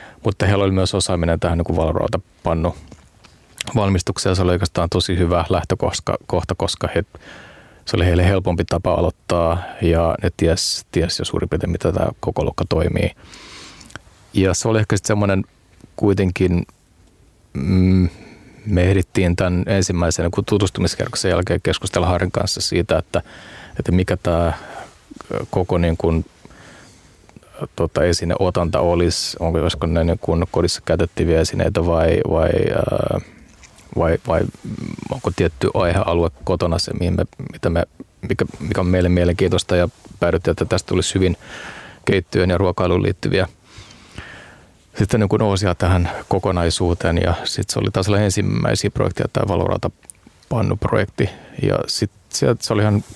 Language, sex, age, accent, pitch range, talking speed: Finnish, male, 30-49, native, 85-100 Hz, 130 wpm